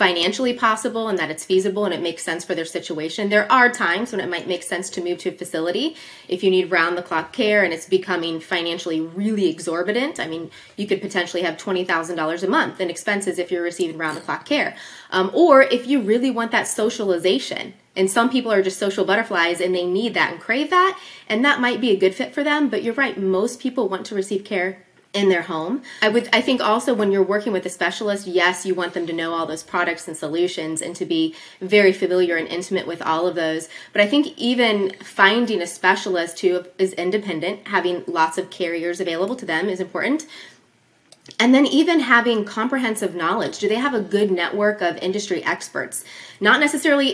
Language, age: English, 20-39